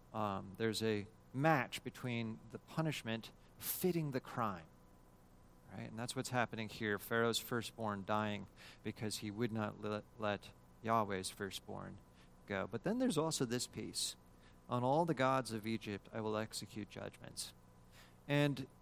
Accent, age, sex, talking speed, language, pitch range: American, 40-59, male, 140 wpm, English, 105-135 Hz